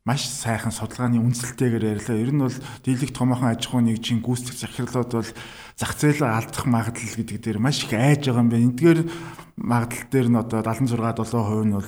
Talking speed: 180 wpm